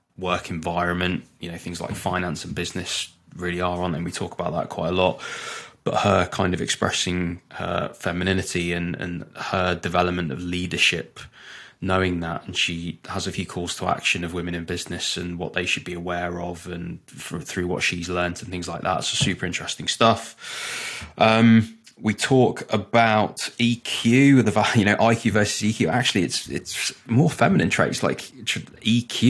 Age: 20-39